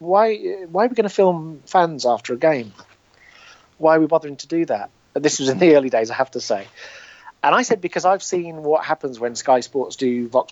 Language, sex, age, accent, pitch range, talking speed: English, male, 40-59, British, 125-170 Hz, 235 wpm